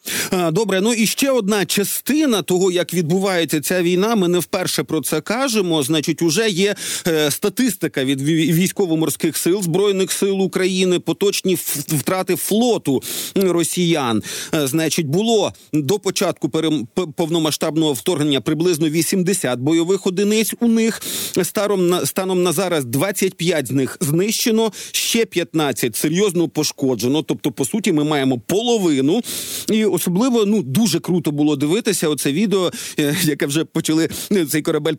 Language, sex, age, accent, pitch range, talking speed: Ukrainian, male, 40-59, native, 155-200 Hz, 130 wpm